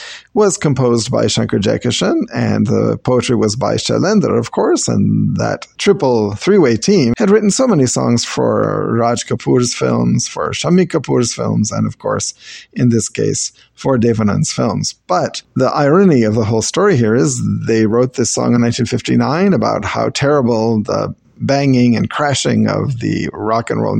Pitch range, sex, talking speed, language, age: 115-145 Hz, male, 170 wpm, English, 40-59